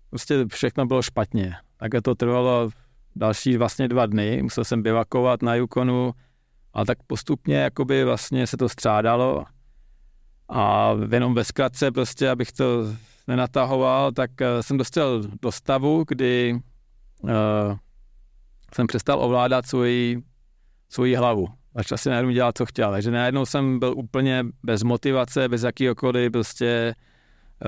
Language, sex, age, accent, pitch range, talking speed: Czech, male, 40-59, native, 115-130 Hz, 130 wpm